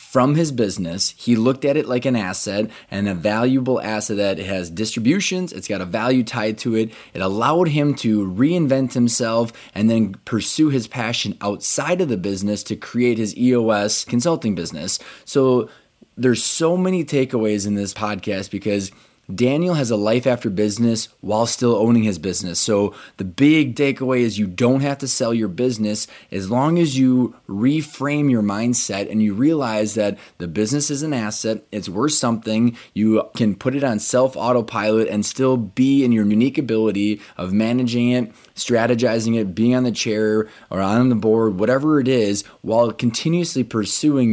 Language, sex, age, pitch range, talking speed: English, male, 20-39, 105-130 Hz, 175 wpm